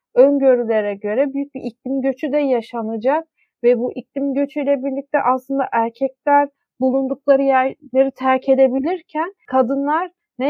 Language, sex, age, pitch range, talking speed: Turkish, female, 40-59, 235-280 Hz, 120 wpm